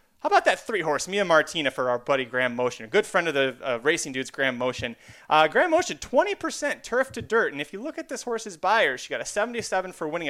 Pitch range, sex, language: 130-195 Hz, male, English